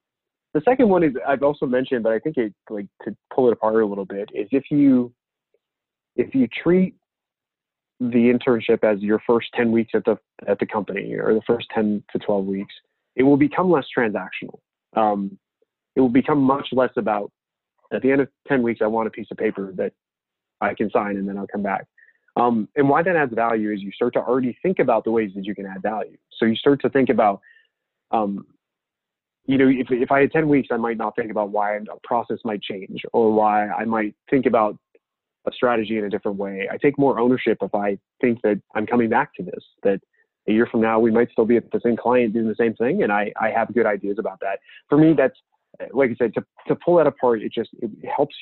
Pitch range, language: 105-130 Hz, English